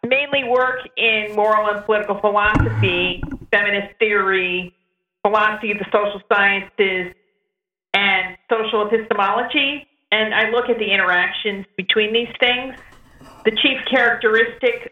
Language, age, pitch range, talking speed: English, 50-69, 205-240 Hz, 115 wpm